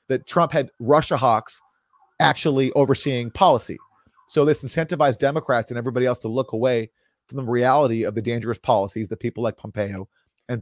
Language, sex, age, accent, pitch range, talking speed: English, male, 30-49, American, 115-140 Hz, 170 wpm